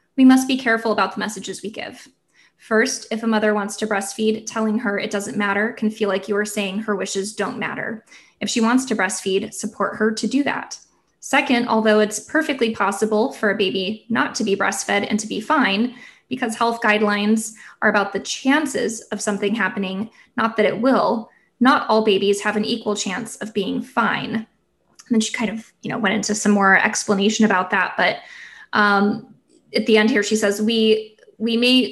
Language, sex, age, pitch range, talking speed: English, female, 20-39, 205-230 Hz, 200 wpm